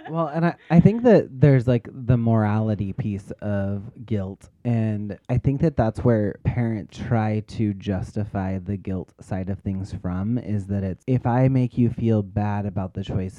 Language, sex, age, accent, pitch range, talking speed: English, male, 30-49, American, 100-125 Hz, 185 wpm